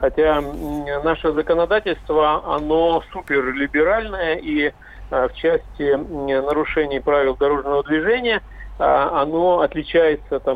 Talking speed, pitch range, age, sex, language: 80 wpm, 145-185 Hz, 50-69, male, Russian